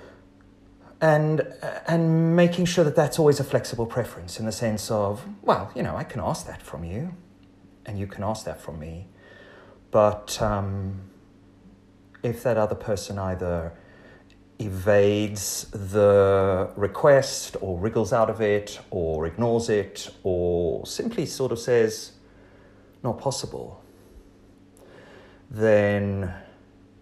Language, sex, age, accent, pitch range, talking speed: English, male, 30-49, British, 95-105 Hz, 125 wpm